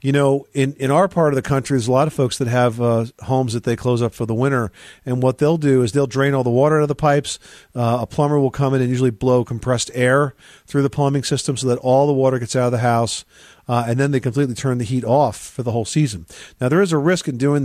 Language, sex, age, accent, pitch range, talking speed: English, male, 40-59, American, 115-135 Hz, 285 wpm